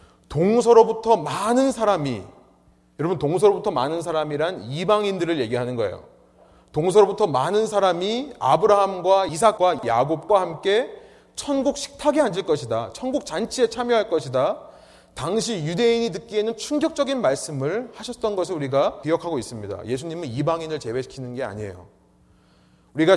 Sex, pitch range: male, 130-210 Hz